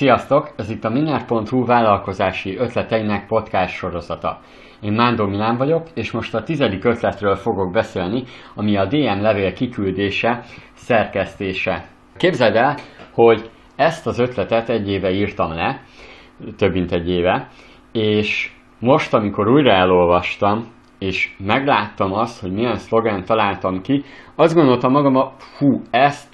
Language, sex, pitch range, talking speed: Hungarian, male, 95-120 Hz, 130 wpm